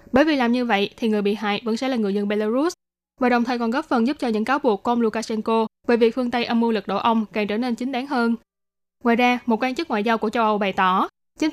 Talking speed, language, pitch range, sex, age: 290 wpm, Vietnamese, 215-255 Hz, female, 10-29